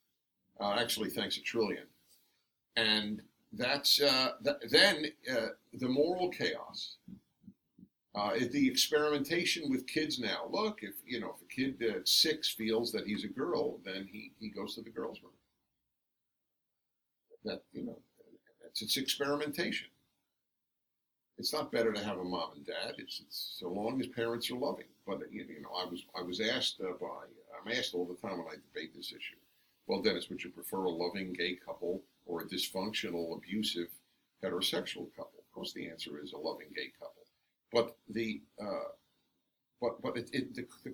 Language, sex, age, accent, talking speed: English, male, 50-69, American, 175 wpm